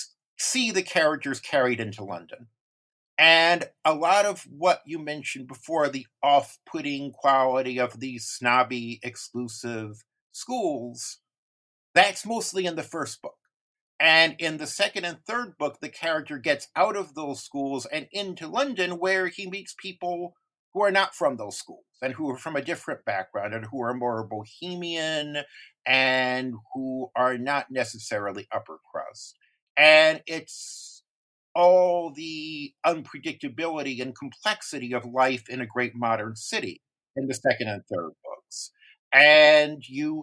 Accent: American